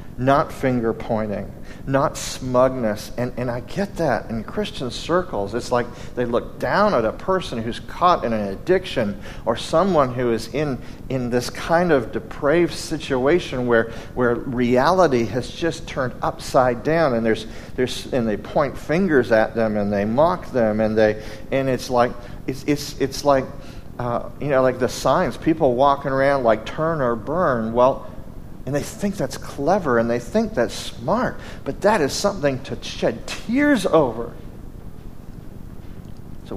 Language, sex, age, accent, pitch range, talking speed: English, male, 40-59, American, 110-135 Hz, 165 wpm